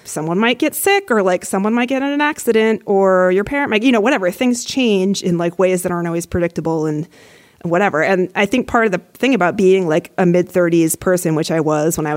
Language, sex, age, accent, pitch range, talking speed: English, female, 30-49, American, 170-225 Hz, 240 wpm